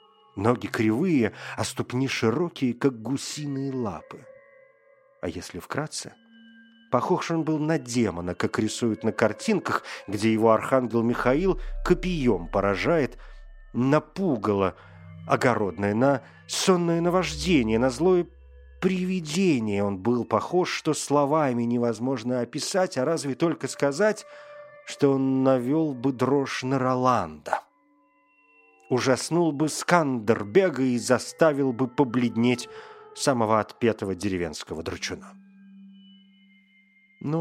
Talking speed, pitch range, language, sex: 105 wpm, 110-180 Hz, Russian, male